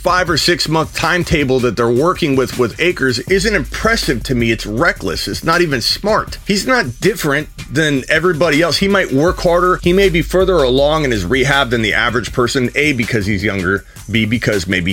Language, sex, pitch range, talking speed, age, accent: English, male, 110-165 Hz, 200 wpm, 30-49, American